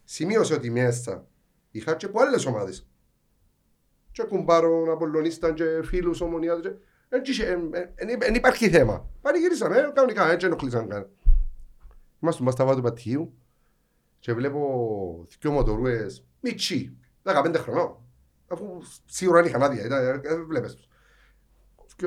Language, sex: Greek, male